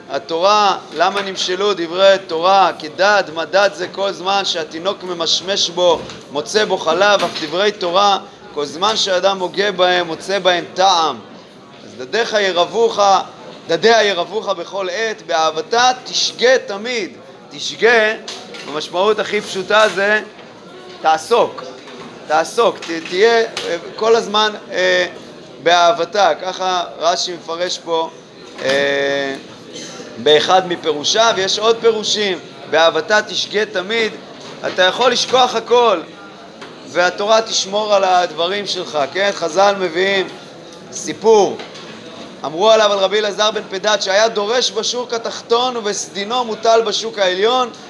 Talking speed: 115 wpm